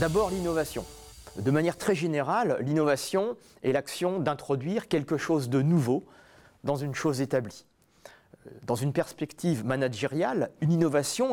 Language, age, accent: French, 40-59, French